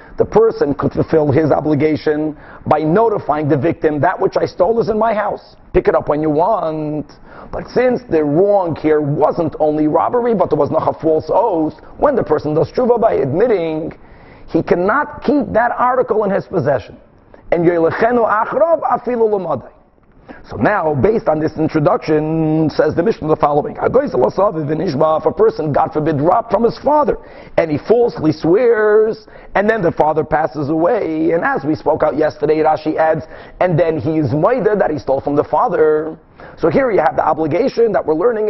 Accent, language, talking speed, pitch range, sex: American, English, 180 wpm, 155-200 Hz, male